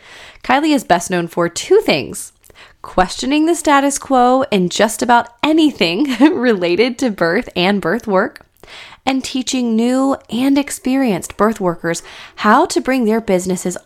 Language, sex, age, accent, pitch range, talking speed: English, female, 20-39, American, 180-245 Hz, 145 wpm